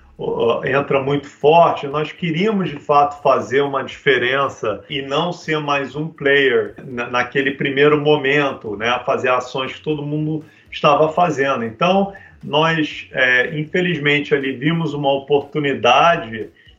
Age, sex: 40-59, male